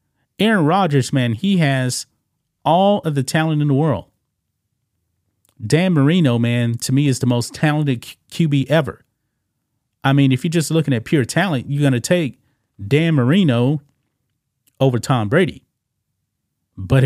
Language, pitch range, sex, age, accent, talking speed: English, 115-145 Hz, male, 30-49, American, 150 wpm